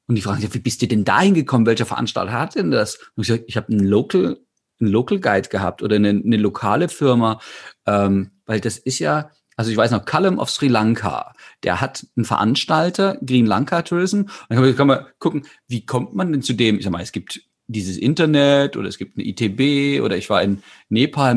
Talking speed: 225 wpm